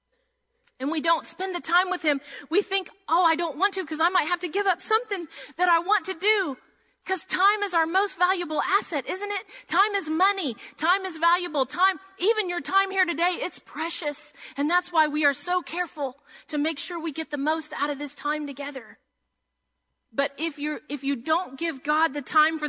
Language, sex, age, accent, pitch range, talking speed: English, female, 40-59, American, 260-350 Hz, 215 wpm